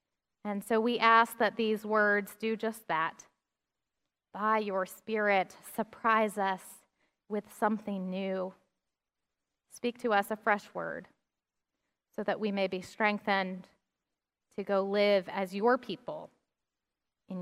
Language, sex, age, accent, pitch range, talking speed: English, female, 20-39, American, 210-315 Hz, 130 wpm